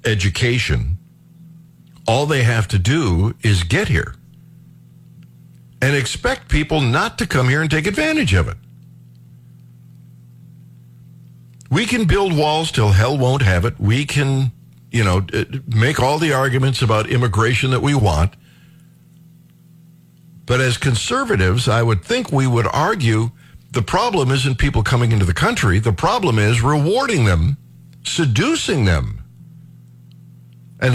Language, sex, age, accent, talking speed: English, male, 60-79, American, 130 wpm